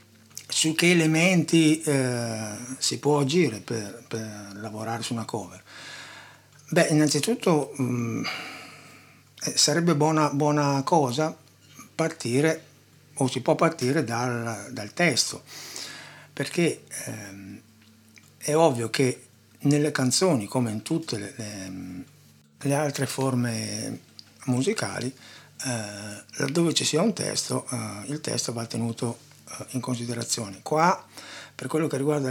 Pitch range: 115-145 Hz